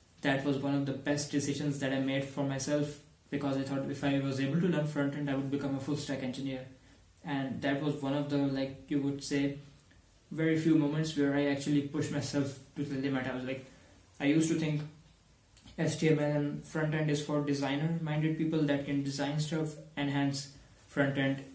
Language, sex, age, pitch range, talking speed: Urdu, male, 20-39, 135-145 Hz, 200 wpm